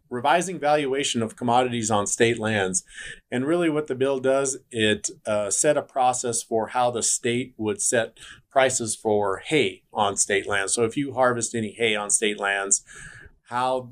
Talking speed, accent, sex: 175 wpm, American, male